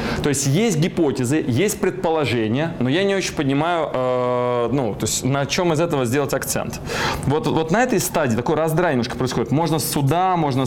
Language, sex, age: Russian, male, 20-39